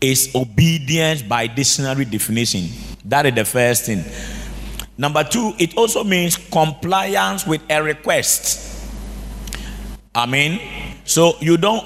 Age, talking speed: 50-69, 120 wpm